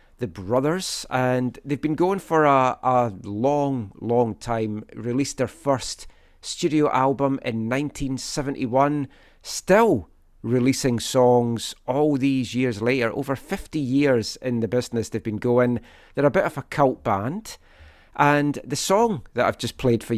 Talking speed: 150 wpm